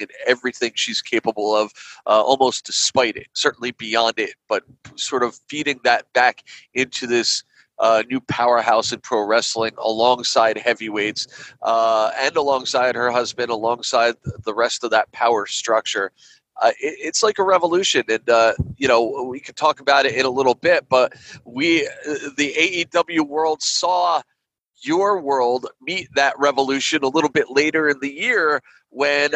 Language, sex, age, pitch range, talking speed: English, male, 30-49, 120-170 Hz, 160 wpm